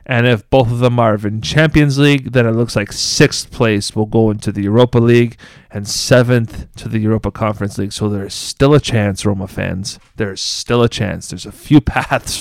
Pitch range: 115-155 Hz